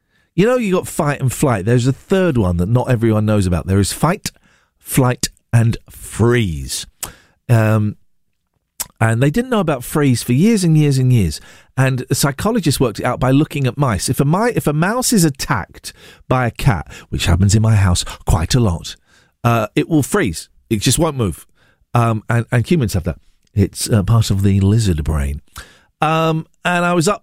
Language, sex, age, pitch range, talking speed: English, male, 50-69, 100-155 Hz, 195 wpm